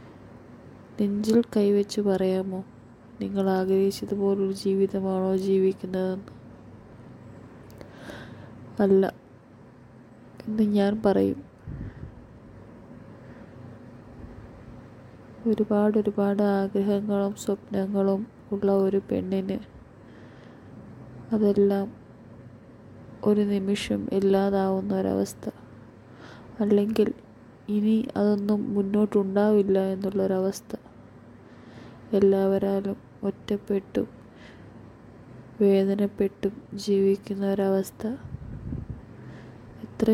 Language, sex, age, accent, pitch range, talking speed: Malayalam, female, 20-39, native, 120-200 Hz, 50 wpm